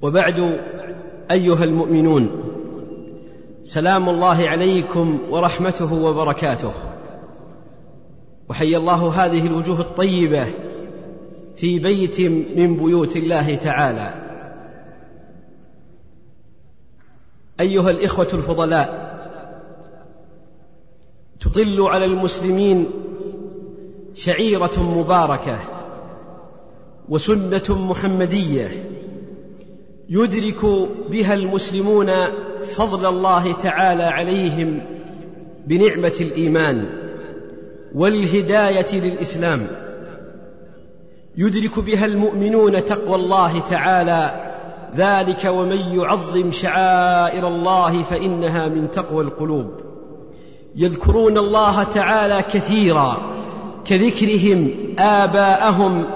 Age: 40-59